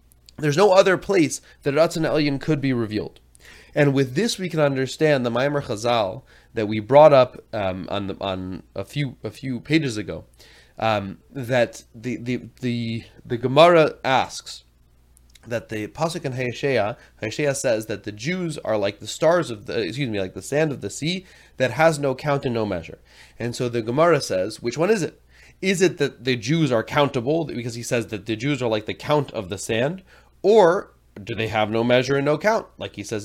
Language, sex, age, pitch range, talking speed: English, male, 30-49, 115-155 Hz, 200 wpm